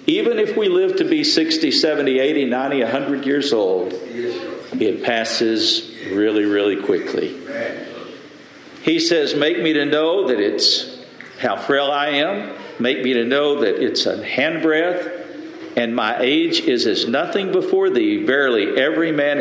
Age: 50-69